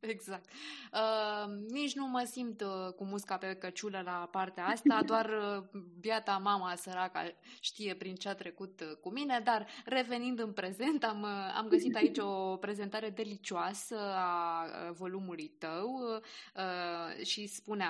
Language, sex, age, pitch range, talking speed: Romanian, female, 20-39, 185-245 Hz, 155 wpm